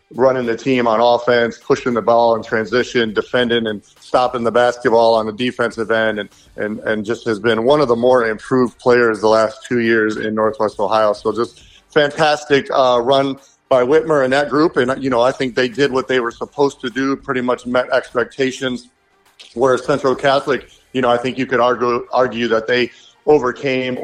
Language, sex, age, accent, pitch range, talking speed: English, male, 40-59, American, 115-130 Hz, 195 wpm